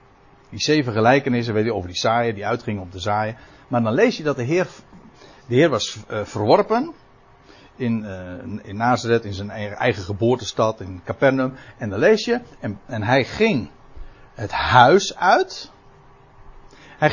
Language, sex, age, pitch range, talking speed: Dutch, male, 60-79, 110-155 Hz, 165 wpm